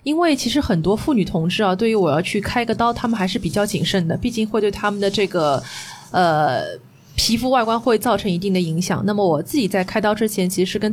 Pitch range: 185-235 Hz